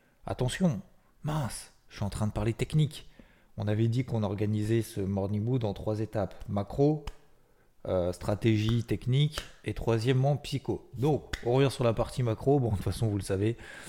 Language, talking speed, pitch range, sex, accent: French, 175 wpm, 95-115 Hz, male, French